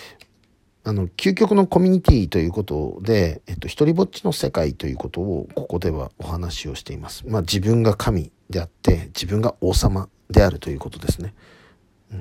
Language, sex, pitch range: Japanese, male, 90-130 Hz